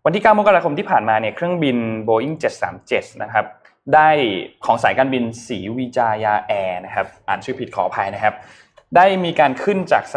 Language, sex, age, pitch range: Thai, male, 20-39, 110-150 Hz